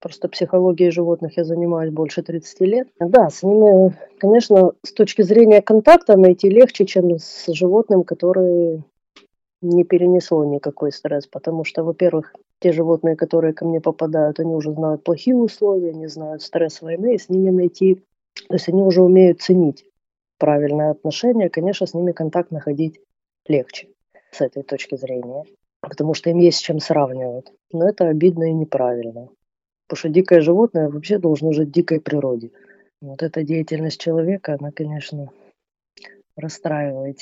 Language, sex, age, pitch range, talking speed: Russian, female, 20-39, 155-185 Hz, 155 wpm